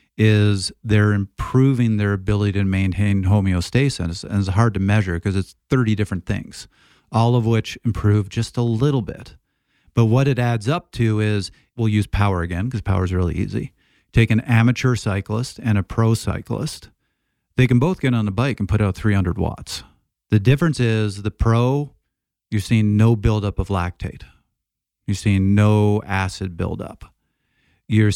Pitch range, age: 95-110 Hz, 40-59